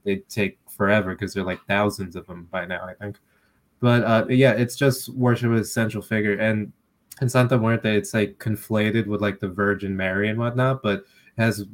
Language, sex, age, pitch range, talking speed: English, male, 20-39, 100-115 Hz, 205 wpm